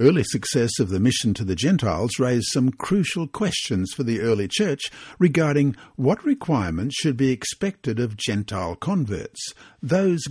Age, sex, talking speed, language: 60-79, male, 150 wpm, English